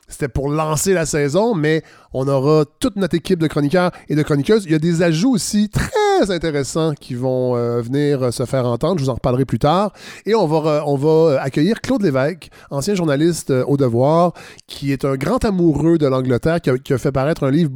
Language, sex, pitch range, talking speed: French, male, 130-160 Hz, 210 wpm